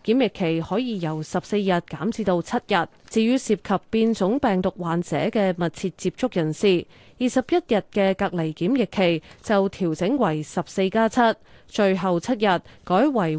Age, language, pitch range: 30-49, Chinese, 175-235 Hz